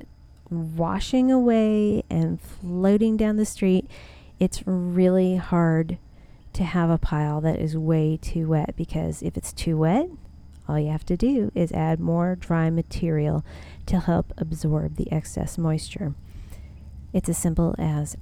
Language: English